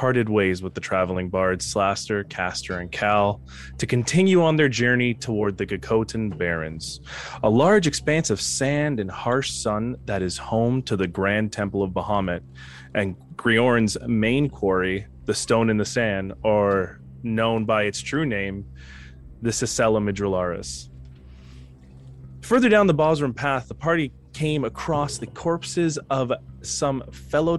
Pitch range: 95-140 Hz